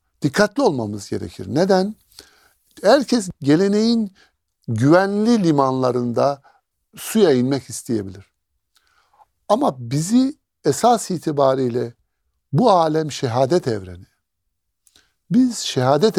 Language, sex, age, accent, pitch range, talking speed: Turkish, male, 60-79, native, 105-175 Hz, 80 wpm